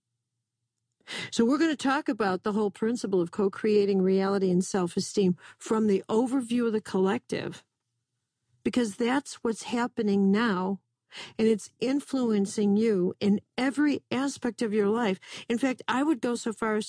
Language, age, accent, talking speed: English, 50-69, American, 155 wpm